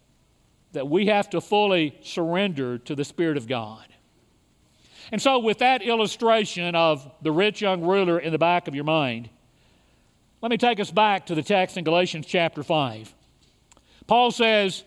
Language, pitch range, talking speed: English, 170-230 Hz, 165 wpm